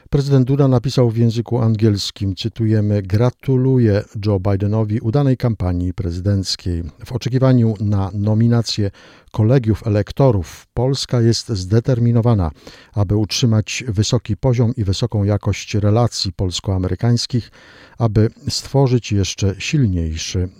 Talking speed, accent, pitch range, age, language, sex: 100 wpm, native, 100-125 Hz, 50-69, Polish, male